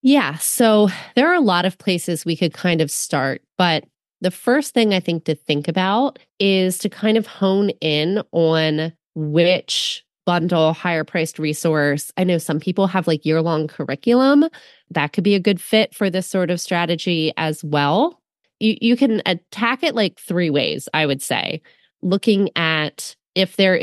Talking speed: 175 wpm